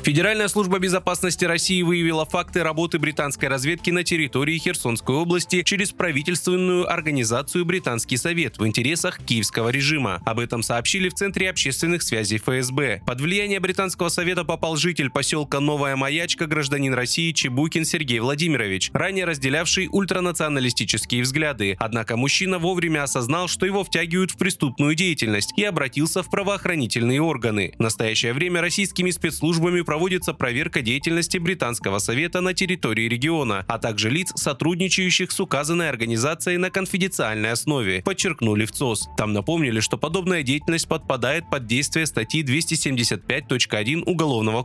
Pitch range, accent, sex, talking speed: 120-180 Hz, native, male, 135 wpm